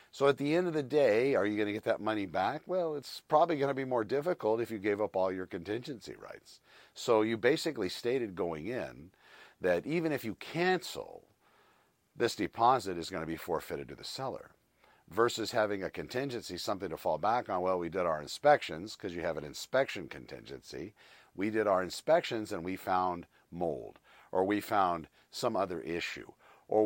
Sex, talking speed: male, 195 wpm